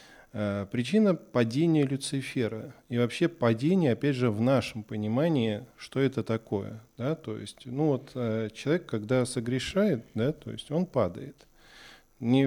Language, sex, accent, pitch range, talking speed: Russian, male, native, 110-145 Hz, 135 wpm